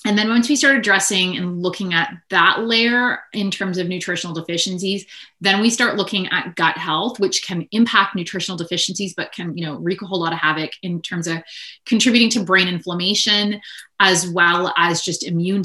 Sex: female